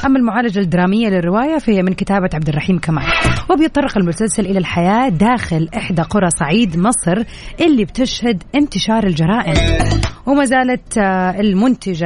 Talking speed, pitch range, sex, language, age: 125 wpm, 175-230 Hz, female, Arabic, 30-49